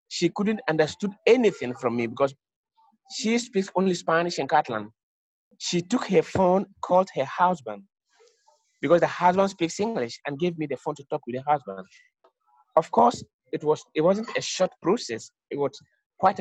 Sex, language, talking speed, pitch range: male, English, 170 wpm, 140-200 Hz